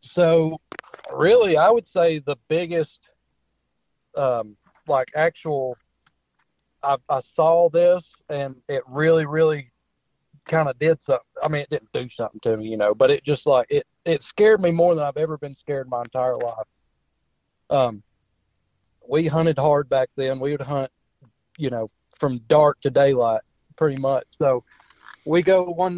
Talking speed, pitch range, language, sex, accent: 165 wpm, 130-165 Hz, English, male, American